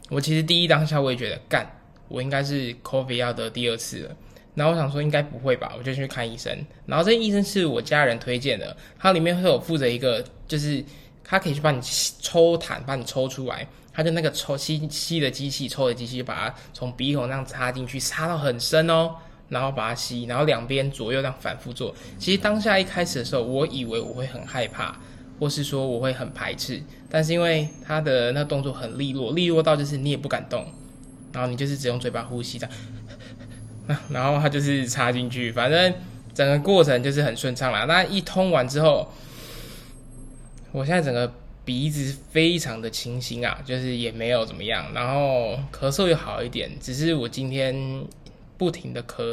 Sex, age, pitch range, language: male, 10-29, 125-155 Hz, Chinese